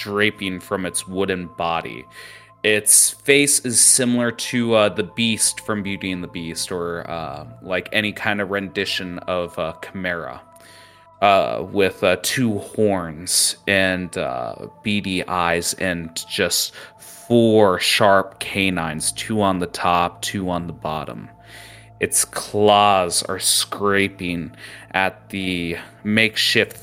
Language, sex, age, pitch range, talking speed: English, male, 30-49, 90-105 Hz, 125 wpm